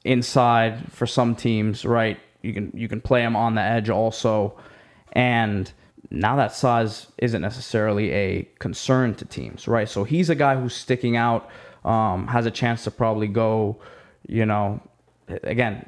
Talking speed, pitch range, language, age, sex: 165 wpm, 105-120 Hz, English, 20-39, male